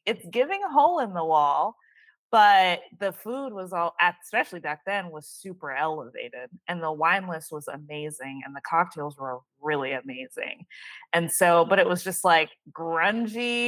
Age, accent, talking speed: 20-39, American, 165 wpm